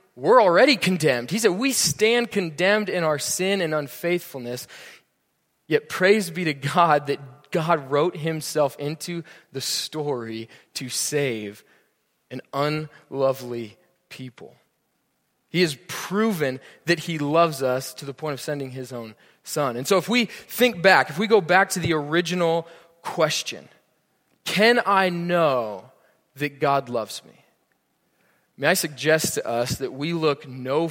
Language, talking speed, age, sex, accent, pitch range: English, 145 wpm, 20-39, male, American, 145-185 Hz